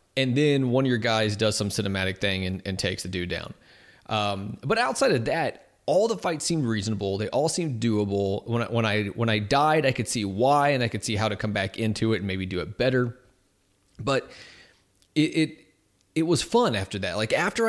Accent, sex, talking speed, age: American, male, 225 wpm, 30-49